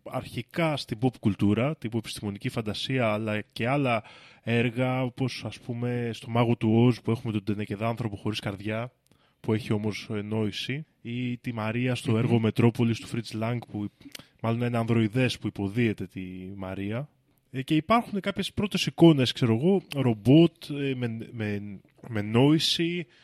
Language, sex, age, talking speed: Greek, male, 20-39, 150 wpm